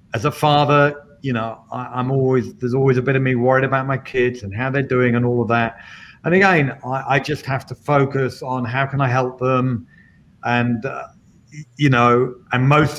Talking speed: 210 wpm